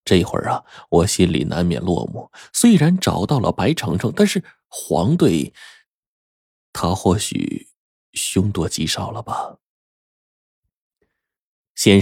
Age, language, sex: 20-39, Chinese, male